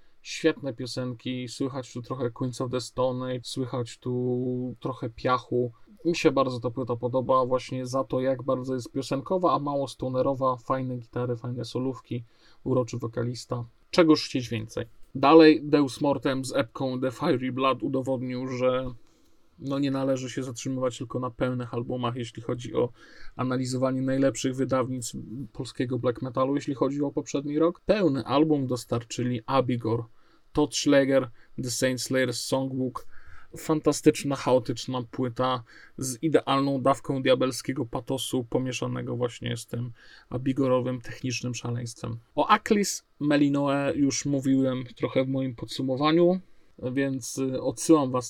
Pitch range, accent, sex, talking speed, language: 125-140 Hz, native, male, 135 wpm, Polish